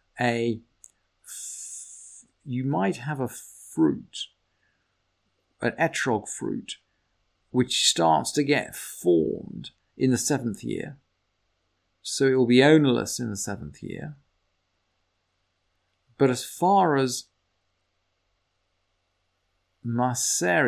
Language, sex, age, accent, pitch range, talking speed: English, male, 50-69, British, 95-130 Hz, 95 wpm